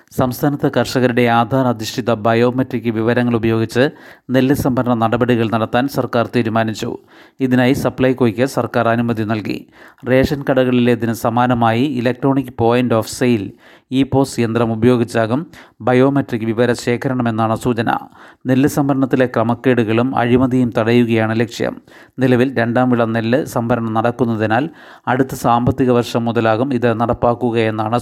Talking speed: 105 wpm